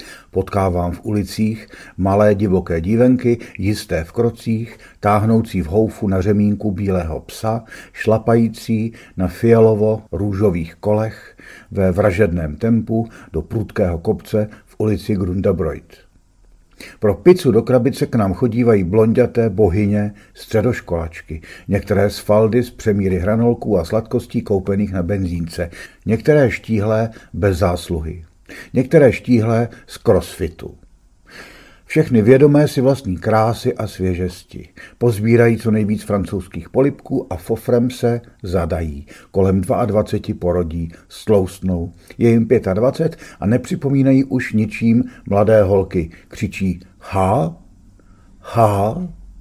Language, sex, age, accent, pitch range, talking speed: Czech, male, 50-69, native, 95-115 Hz, 110 wpm